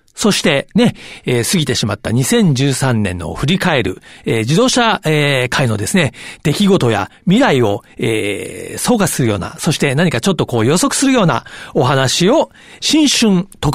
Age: 40-59